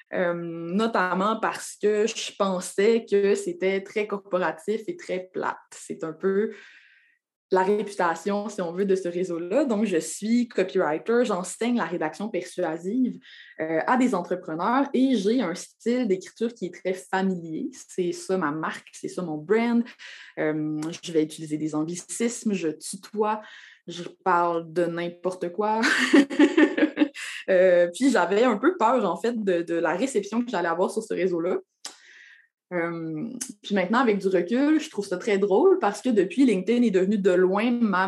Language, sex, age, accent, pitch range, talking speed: French, female, 20-39, Canadian, 175-225 Hz, 165 wpm